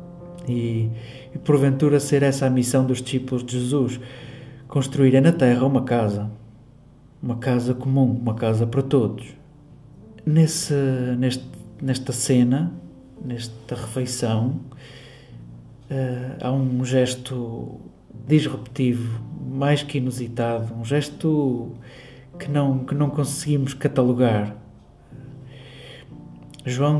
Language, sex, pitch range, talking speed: Portuguese, male, 125-150 Hz, 95 wpm